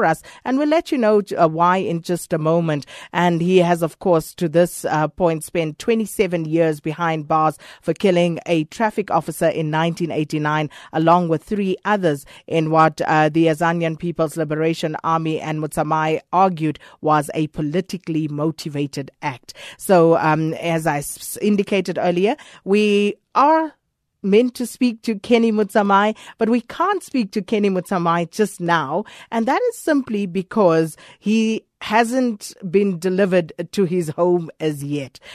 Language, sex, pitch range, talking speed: English, female, 165-215 Hz, 155 wpm